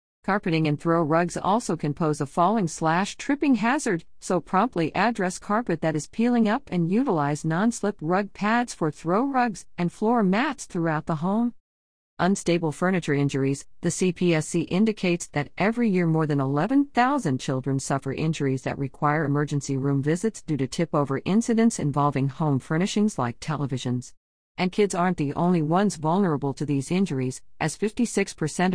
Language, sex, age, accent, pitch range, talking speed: English, female, 50-69, American, 145-200 Hz, 150 wpm